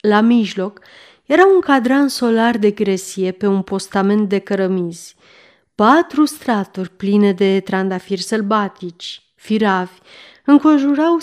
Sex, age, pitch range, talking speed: female, 30-49, 195-245 Hz, 110 wpm